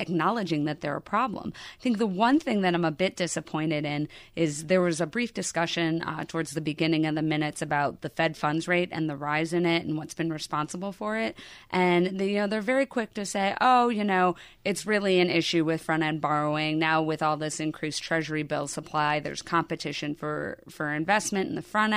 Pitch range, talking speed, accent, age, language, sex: 155-185 Hz, 220 wpm, American, 30-49, English, female